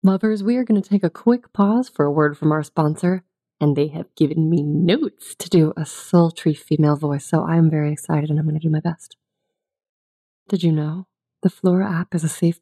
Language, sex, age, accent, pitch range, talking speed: English, female, 30-49, American, 160-190 Hz, 230 wpm